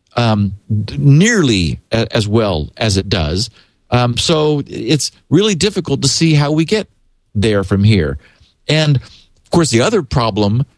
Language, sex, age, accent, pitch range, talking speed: English, male, 50-69, American, 110-145 Hz, 145 wpm